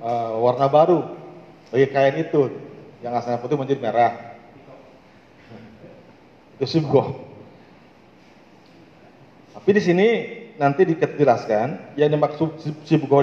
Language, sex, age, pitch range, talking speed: Malay, male, 40-59, 120-155 Hz, 90 wpm